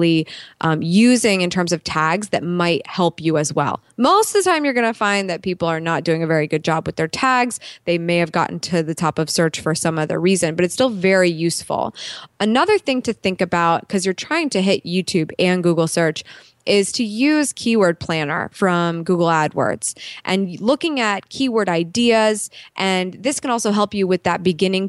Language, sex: English, female